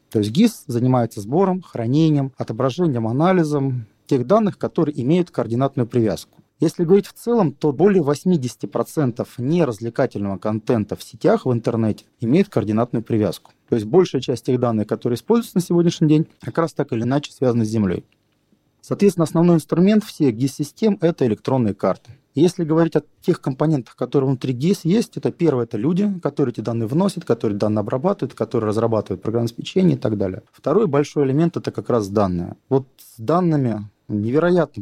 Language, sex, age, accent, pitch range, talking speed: Russian, male, 30-49, native, 110-155 Hz, 170 wpm